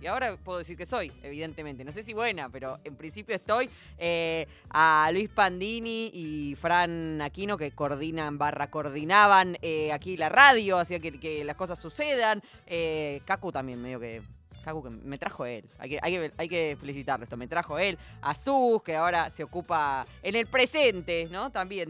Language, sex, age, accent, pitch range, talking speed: Spanish, female, 20-39, Argentinian, 160-215 Hz, 180 wpm